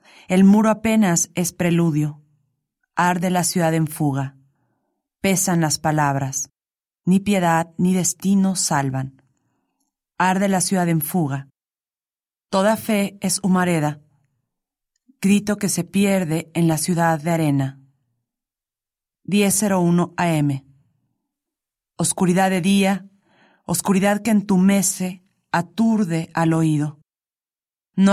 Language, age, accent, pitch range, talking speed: Spanish, 40-59, Mexican, 155-195 Hz, 100 wpm